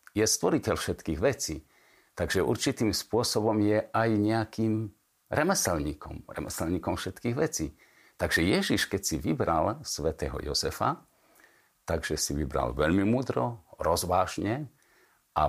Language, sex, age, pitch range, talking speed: Slovak, male, 50-69, 75-105 Hz, 110 wpm